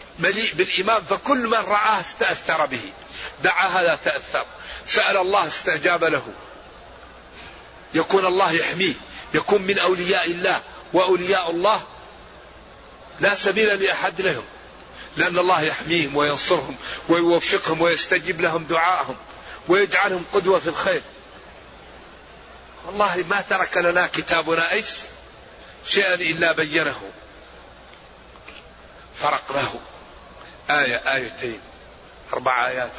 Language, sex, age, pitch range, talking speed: Arabic, male, 40-59, 165-200 Hz, 100 wpm